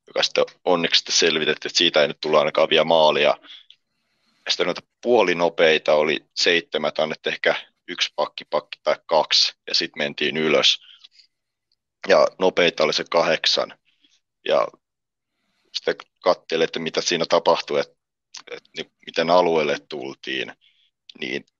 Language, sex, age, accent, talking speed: Finnish, male, 30-49, native, 125 wpm